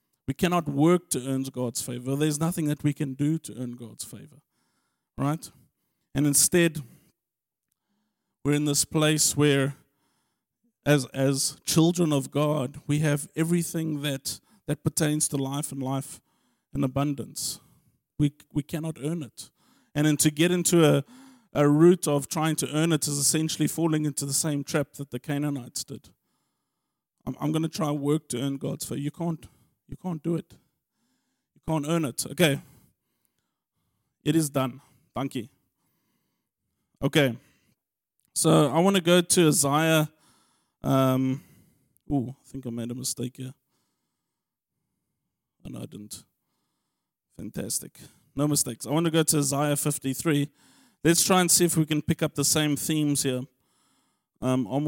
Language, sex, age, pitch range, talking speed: English, male, 50-69, 135-160 Hz, 155 wpm